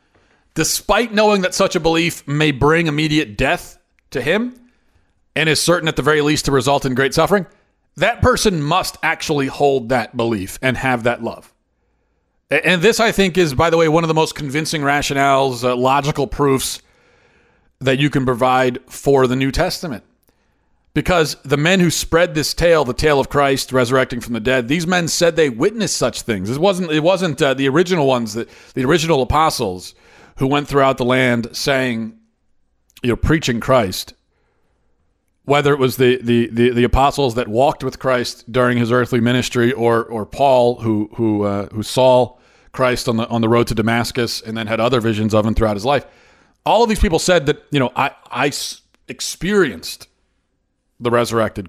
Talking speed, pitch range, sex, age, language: 185 wpm, 115-155 Hz, male, 40-59, English